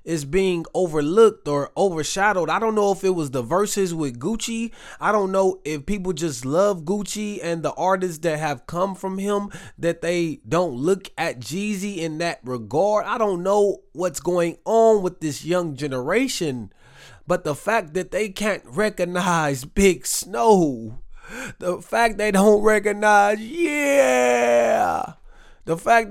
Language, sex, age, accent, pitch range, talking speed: English, male, 20-39, American, 165-210 Hz, 155 wpm